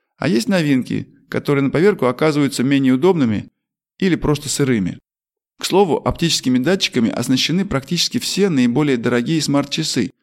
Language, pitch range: Russian, 125-160 Hz